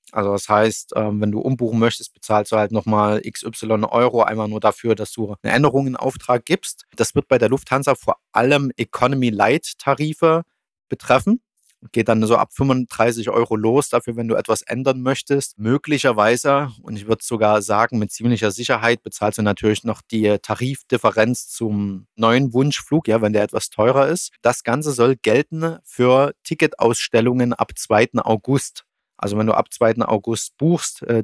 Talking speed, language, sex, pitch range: 170 wpm, German, male, 105-125 Hz